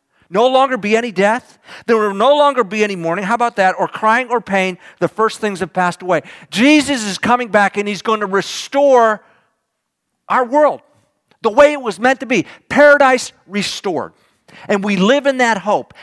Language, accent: English, American